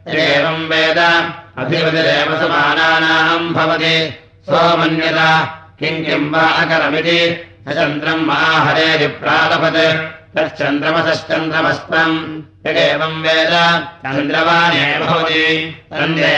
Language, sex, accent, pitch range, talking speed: Russian, male, Indian, 155-165 Hz, 50 wpm